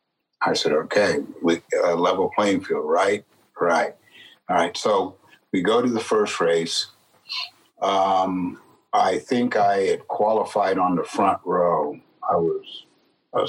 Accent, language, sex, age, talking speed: American, English, male, 50-69, 140 wpm